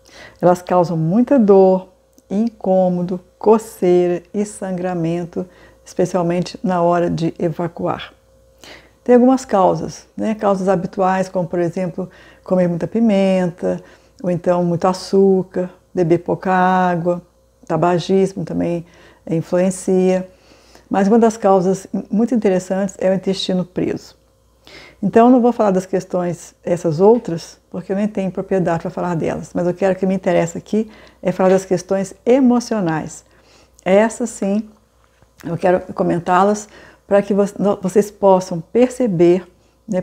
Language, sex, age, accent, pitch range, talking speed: Portuguese, female, 60-79, Brazilian, 180-205 Hz, 130 wpm